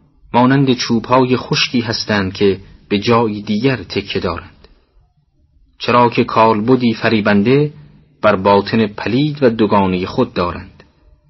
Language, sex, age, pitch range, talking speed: Persian, male, 40-59, 95-125 Hz, 110 wpm